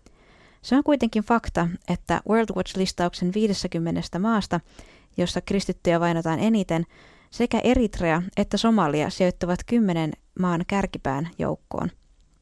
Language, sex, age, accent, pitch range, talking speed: Finnish, female, 20-39, native, 165-200 Hz, 105 wpm